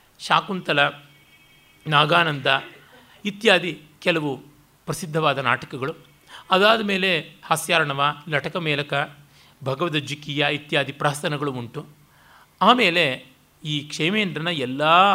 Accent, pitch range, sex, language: native, 145-185 Hz, male, Kannada